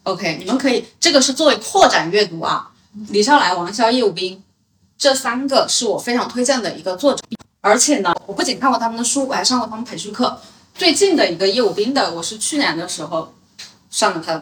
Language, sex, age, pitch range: Chinese, female, 30-49, 185-250 Hz